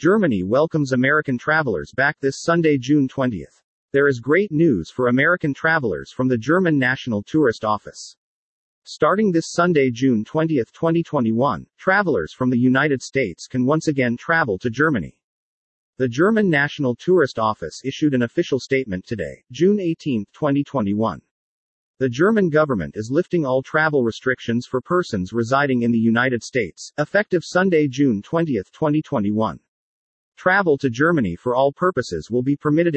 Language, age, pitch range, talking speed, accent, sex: English, 40-59, 120-155 Hz, 145 wpm, American, male